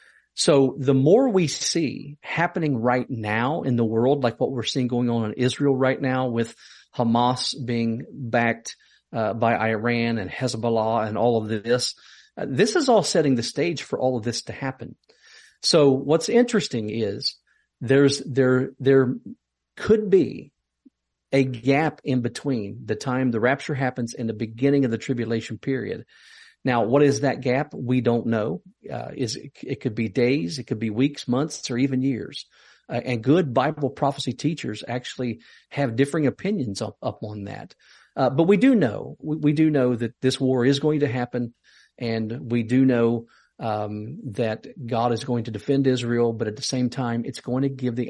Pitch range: 115-135 Hz